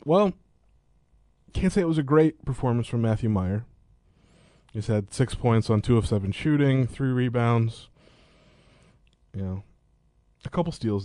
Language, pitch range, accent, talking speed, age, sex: English, 95-120 Hz, American, 145 wpm, 20-39, male